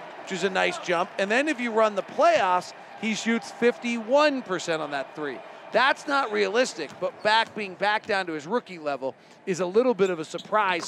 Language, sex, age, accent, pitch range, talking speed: English, male, 40-59, American, 185-235 Hz, 200 wpm